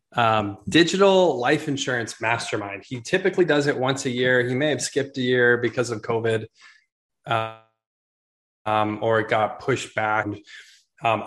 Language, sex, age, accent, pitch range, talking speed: English, male, 20-39, American, 110-130 Hz, 155 wpm